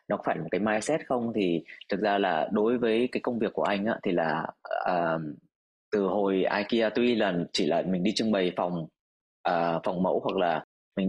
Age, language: 20-39, Vietnamese